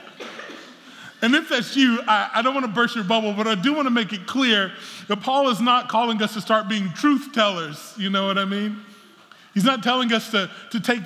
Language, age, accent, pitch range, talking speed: English, 20-39, American, 175-220 Hz, 235 wpm